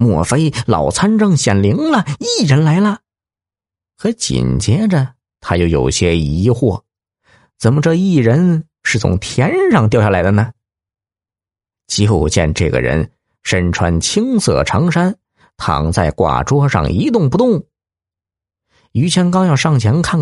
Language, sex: Chinese, male